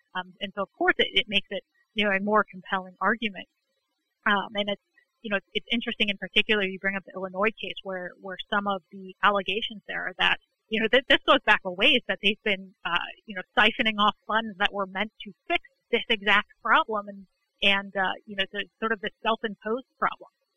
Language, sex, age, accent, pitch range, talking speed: English, female, 30-49, American, 195-235 Hz, 220 wpm